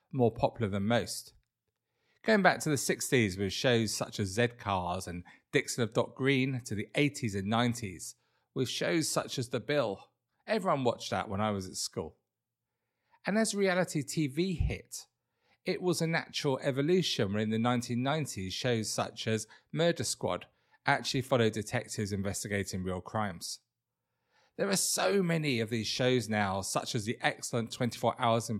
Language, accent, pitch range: English, British, 110-145 Hz